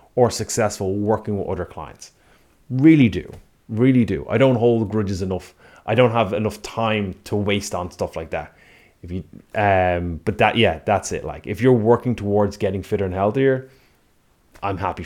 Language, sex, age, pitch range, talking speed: English, male, 30-49, 100-120 Hz, 180 wpm